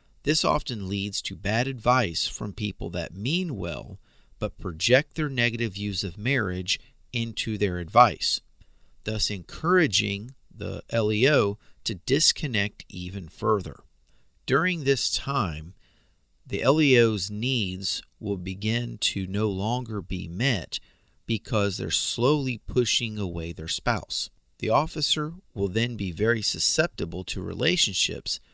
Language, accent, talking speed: English, American, 120 wpm